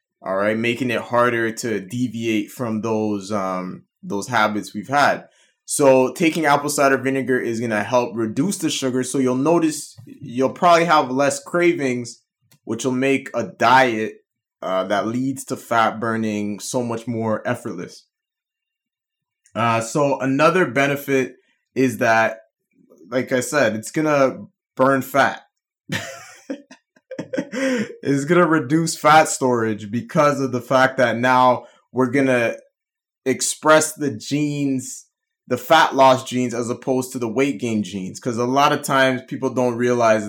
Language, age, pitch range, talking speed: English, 20-39, 115-150 Hz, 150 wpm